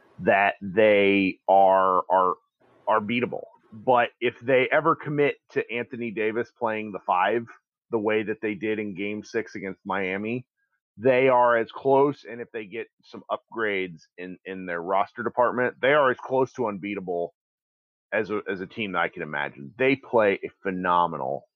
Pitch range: 95-125 Hz